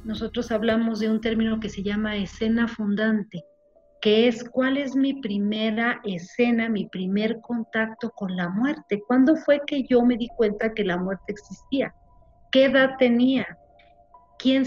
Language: Spanish